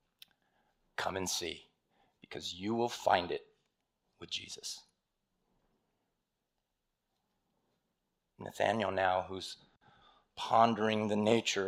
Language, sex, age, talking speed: English, male, 40-59, 80 wpm